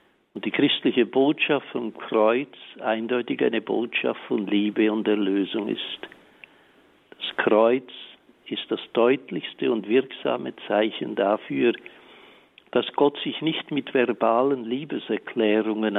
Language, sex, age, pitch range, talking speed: German, male, 60-79, 110-130 Hz, 115 wpm